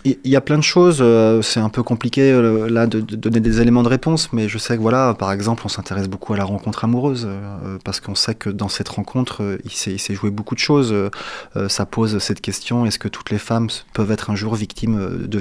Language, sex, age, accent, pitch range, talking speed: French, male, 30-49, French, 110-130 Hz, 240 wpm